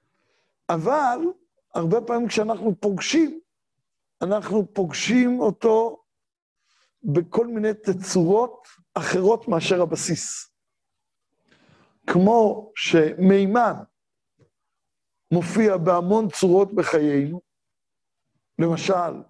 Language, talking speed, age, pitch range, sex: Hebrew, 65 wpm, 60-79, 180-230 Hz, male